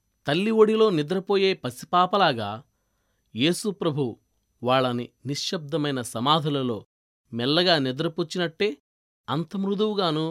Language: Telugu